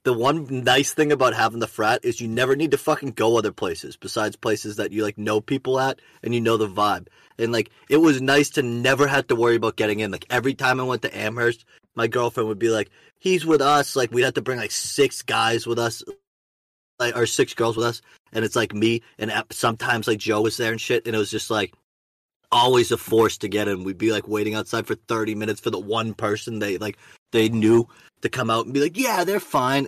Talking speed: 245 wpm